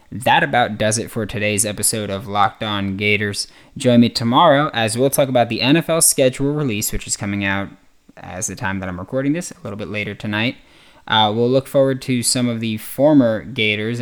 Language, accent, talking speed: English, American, 205 wpm